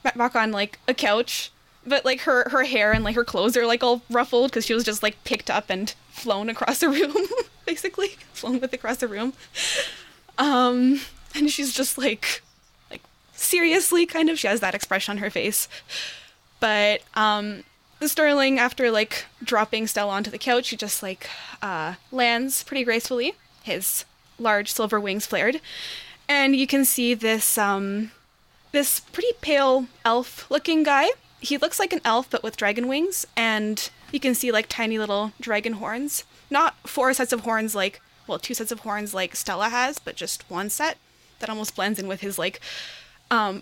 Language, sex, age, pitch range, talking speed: English, female, 10-29, 215-275 Hz, 180 wpm